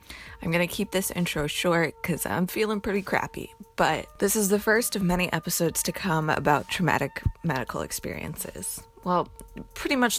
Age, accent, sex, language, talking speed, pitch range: 20-39, American, female, English, 170 wpm, 150-180 Hz